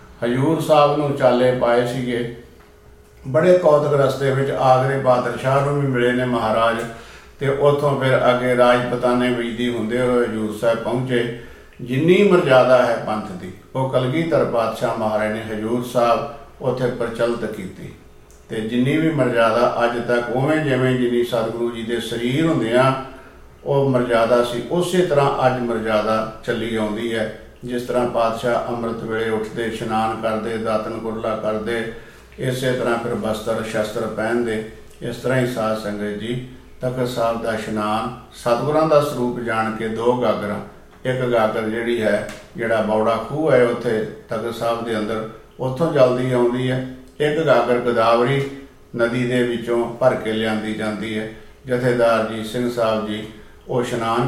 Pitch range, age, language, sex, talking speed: 110-130 Hz, 50-69, Punjabi, male, 150 wpm